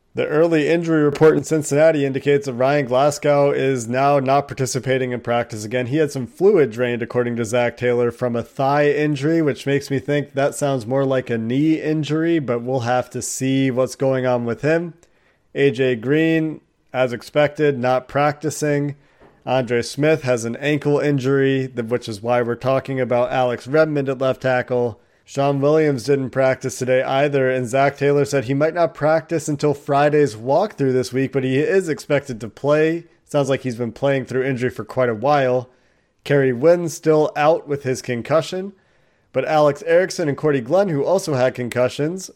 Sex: male